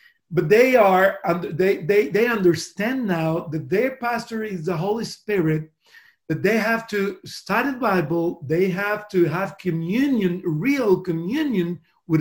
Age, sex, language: 50-69, male, English